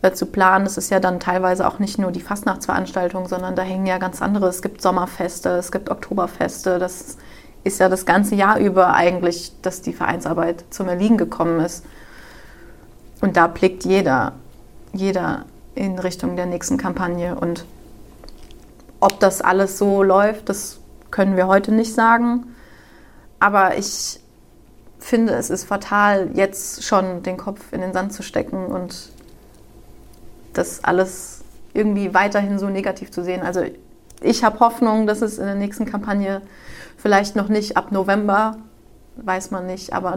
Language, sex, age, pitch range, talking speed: German, female, 30-49, 185-205 Hz, 155 wpm